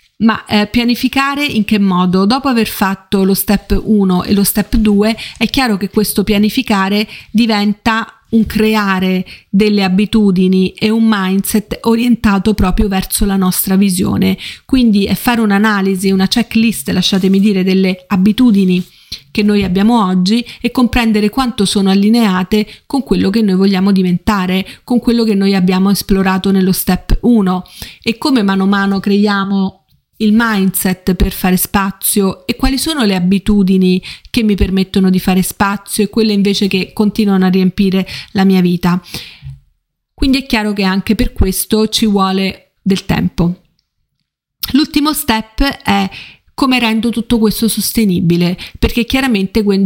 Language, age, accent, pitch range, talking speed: Italian, 40-59, native, 190-220 Hz, 145 wpm